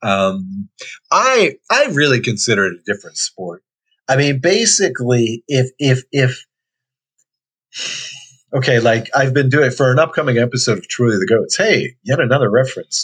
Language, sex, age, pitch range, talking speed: English, male, 40-59, 125-175 Hz, 145 wpm